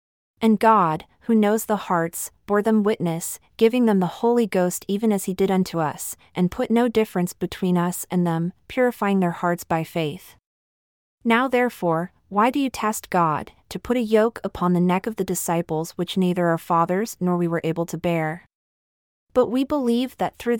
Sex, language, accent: female, English, American